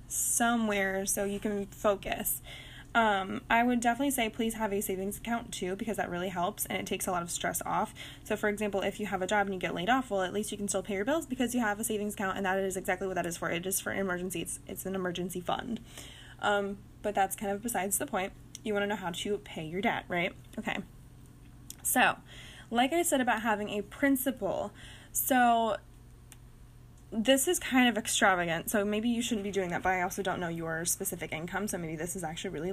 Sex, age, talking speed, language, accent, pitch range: female, 10-29, 235 wpm, English, American, 185-225 Hz